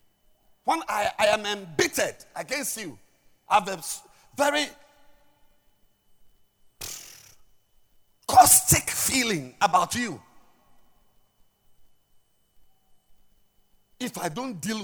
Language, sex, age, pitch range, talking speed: English, male, 50-69, 125-200 Hz, 75 wpm